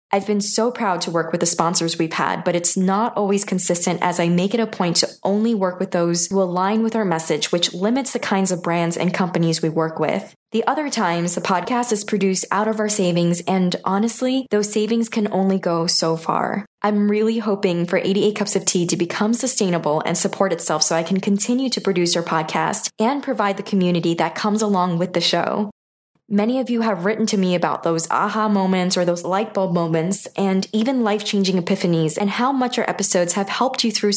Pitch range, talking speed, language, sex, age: 175-215 Hz, 220 wpm, English, female, 10-29